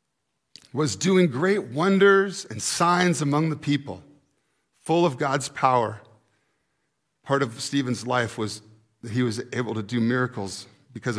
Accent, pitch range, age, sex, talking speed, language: American, 135-180 Hz, 40-59, male, 140 wpm, English